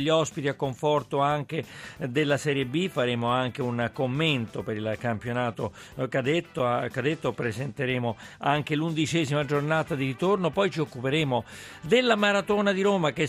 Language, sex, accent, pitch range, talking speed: Italian, male, native, 130-160 Hz, 140 wpm